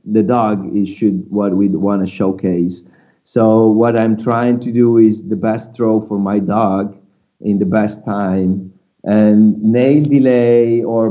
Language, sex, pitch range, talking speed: English, male, 100-120 Hz, 160 wpm